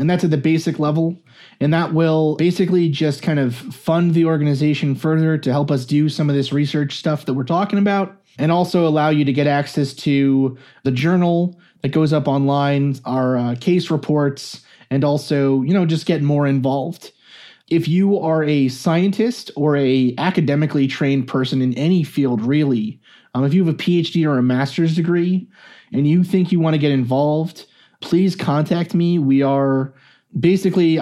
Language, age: English, 30-49